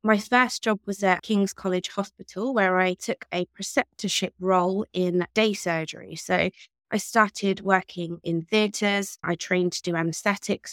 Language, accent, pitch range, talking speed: English, British, 180-205 Hz, 155 wpm